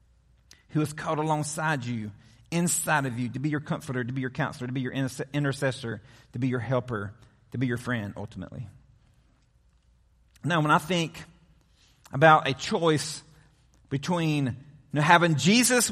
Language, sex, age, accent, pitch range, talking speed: English, male, 40-59, American, 140-220 Hz, 155 wpm